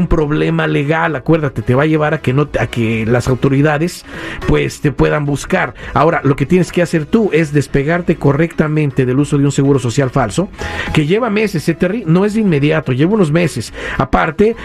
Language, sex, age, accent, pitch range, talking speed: Spanish, male, 50-69, Mexican, 140-170 Hz, 195 wpm